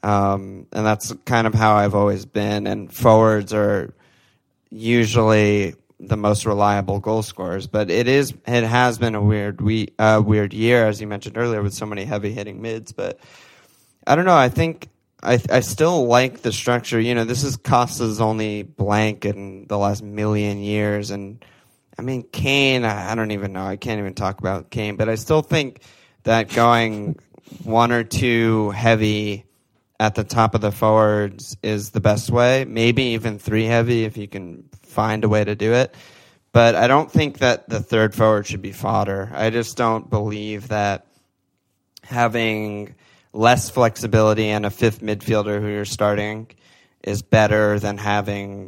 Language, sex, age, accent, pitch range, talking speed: English, male, 20-39, American, 105-115 Hz, 175 wpm